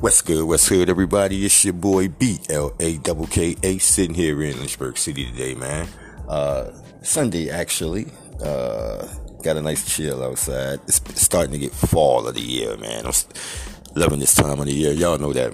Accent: American